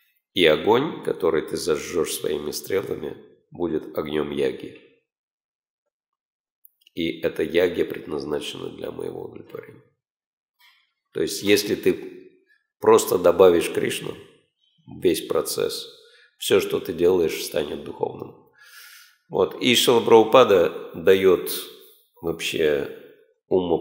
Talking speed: 95 wpm